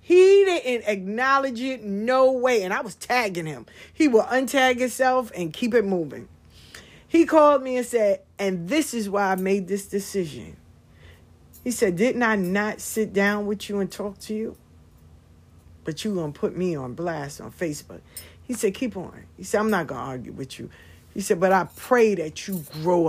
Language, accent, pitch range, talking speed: English, American, 140-210 Hz, 200 wpm